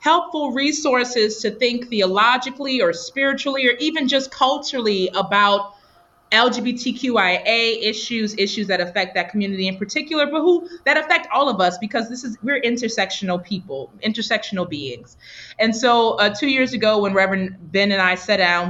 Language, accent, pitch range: English, American, 195-245 Hz